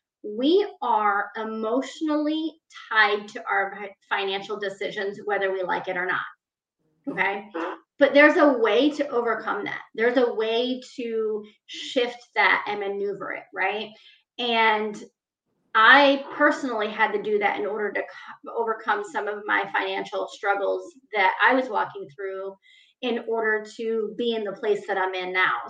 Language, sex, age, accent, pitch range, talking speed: English, female, 30-49, American, 210-275 Hz, 150 wpm